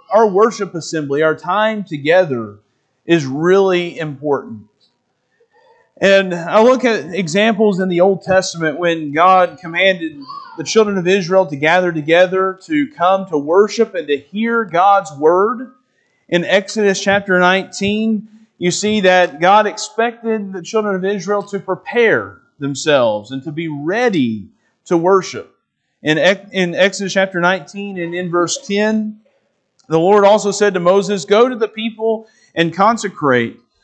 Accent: American